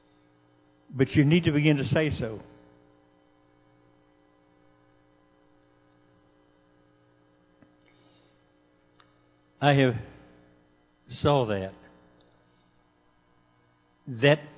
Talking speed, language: 55 wpm, English